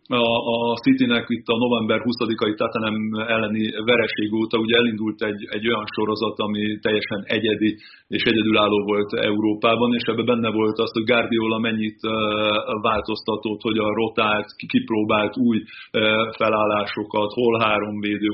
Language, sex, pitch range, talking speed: Hungarian, male, 105-120 Hz, 135 wpm